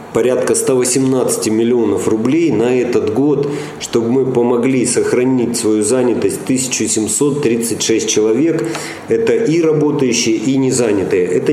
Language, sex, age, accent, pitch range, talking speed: Russian, male, 40-59, native, 115-160 Hz, 115 wpm